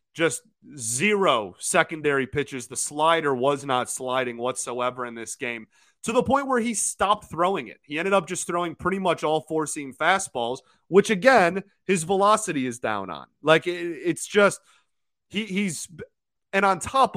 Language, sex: English, male